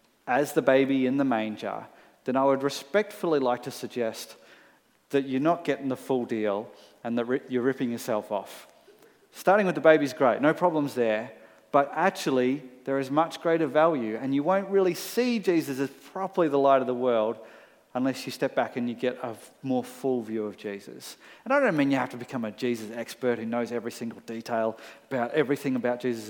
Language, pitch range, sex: English, 115-140 Hz, male